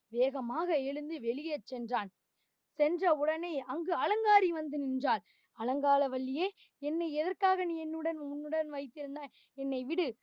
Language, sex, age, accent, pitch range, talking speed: Tamil, female, 20-39, native, 255-315 Hz, 110 wpm